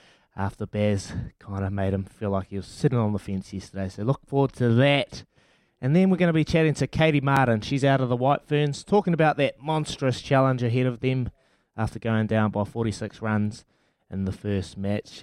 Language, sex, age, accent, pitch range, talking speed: English, male, 20-39, Australian, 110-140 Hz, 215 wpm